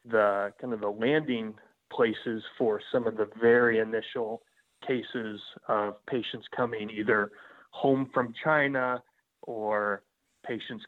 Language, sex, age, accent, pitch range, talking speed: English, male, 30-49, American, 105-125 Hz, 120 wpm